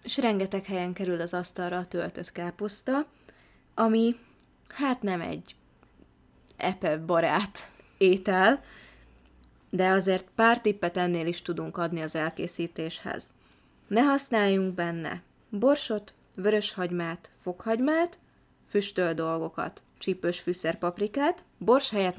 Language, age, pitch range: Hungarian, 20-39, 175-220 Hz